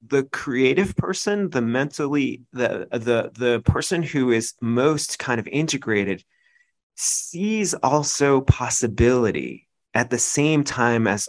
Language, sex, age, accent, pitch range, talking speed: English, male, 30-49, American, 115-150 Hz, 120 wpm